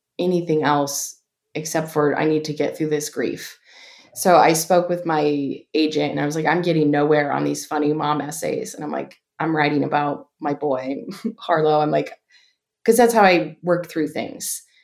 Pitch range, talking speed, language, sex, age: 150-175 Hz, 190 wpm, English, female, 20-39